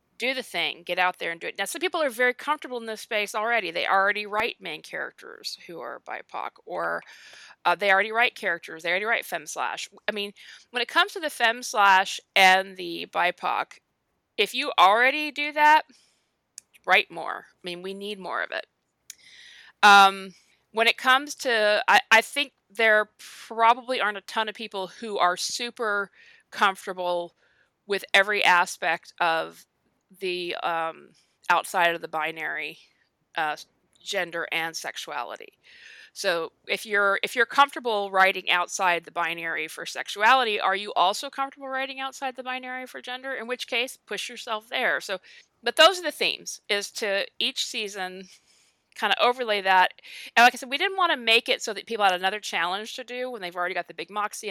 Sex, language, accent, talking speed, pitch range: female, English, American, 180 wpm, 185-250 Hz